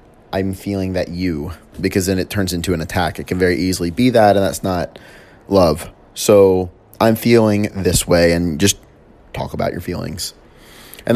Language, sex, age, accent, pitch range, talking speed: English, male, 30-49, American, 95-110 Hz, 175 wpm